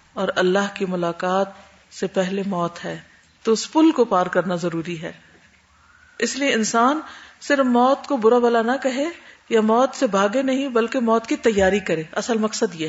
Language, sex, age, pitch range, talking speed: Urdu, female, 50-69, 185-245 Hz, 180 wpm